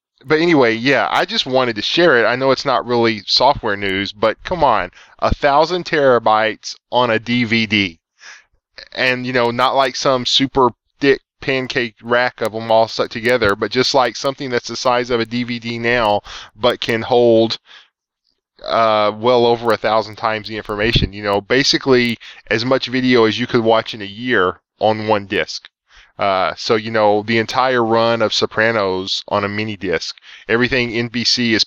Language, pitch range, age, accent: English, 105-125 Hz, 10-29, American